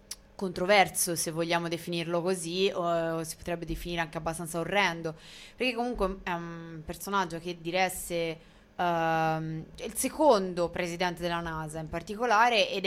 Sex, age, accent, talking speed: female, 20-39, native, 135 wpm